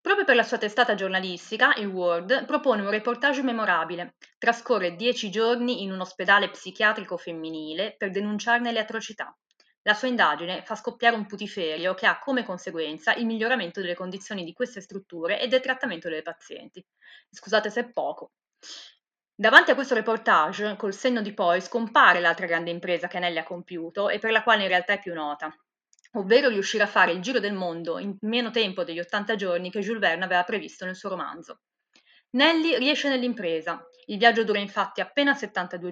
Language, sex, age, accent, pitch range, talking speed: Italian, female, 20-39, native, 185-240 Hz, 180 wpm